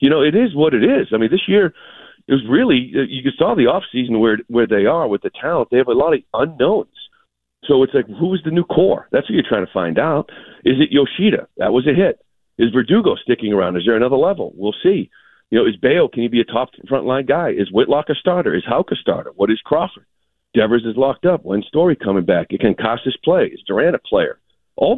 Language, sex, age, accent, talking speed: English, male, 40-59, American, 245 wpm